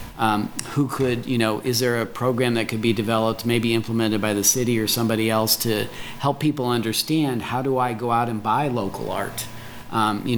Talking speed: 210 wpm